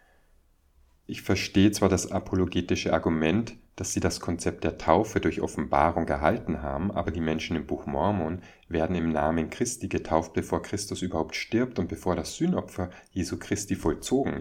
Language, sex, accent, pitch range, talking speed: German, male, German, 80-95 Hz, 160 wpm